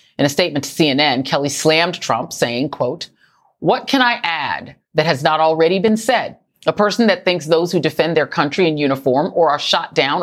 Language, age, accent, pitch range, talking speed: English, 40-59, American, 150-195 Hz, 205 wpm